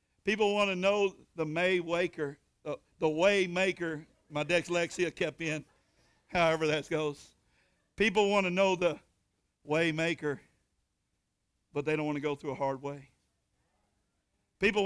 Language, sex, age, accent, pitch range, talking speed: English, male, 60-79, American, 160-215 Hz, 135 wpm